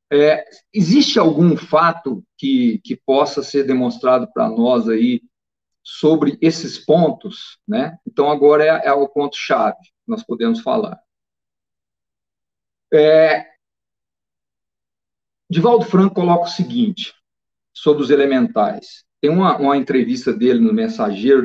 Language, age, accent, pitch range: Portuguese, 40-59, Brazilian, 150-210 Hz